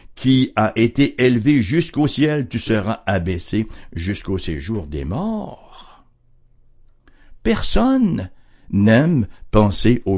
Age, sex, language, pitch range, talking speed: 60-79, male, English, 95-135 Hz, 100 wpm